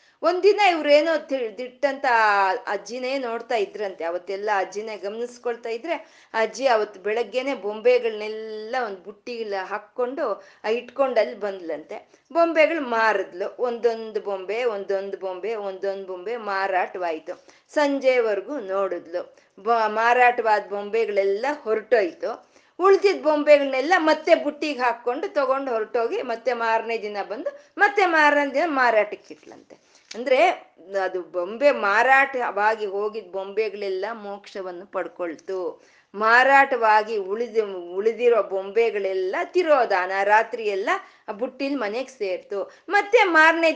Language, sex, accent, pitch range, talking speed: Kannada, female, native, 200-280 Hz, 95 wpm